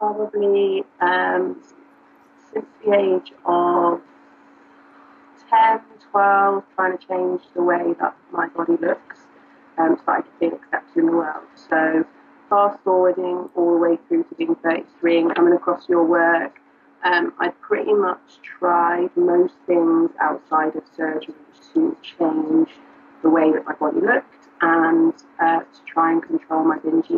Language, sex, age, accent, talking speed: English, female, 30-49, British, 150 wpm